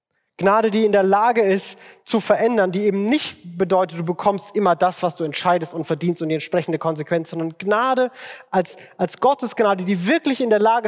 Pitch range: 150-200 Hz